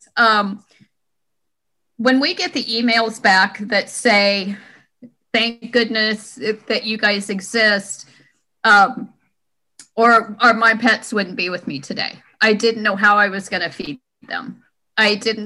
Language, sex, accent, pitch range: English, female, American, 200-235 Hz